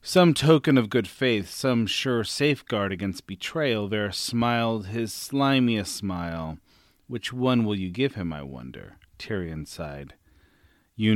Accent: American